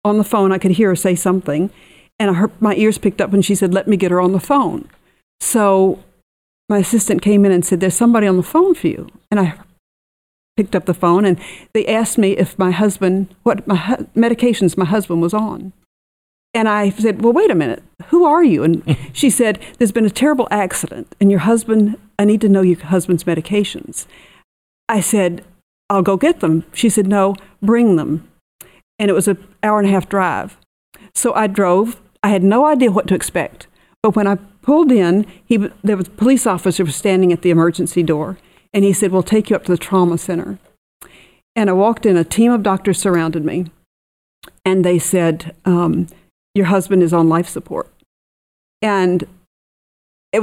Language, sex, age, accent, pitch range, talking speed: English, female, 50-69, American, 180-220 Hz, 200 wpm